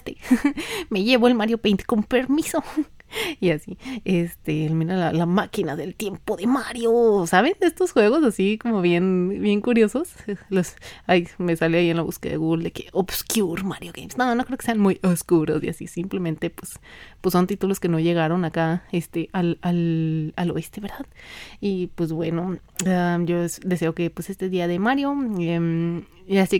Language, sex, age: Spanish, female, 30-49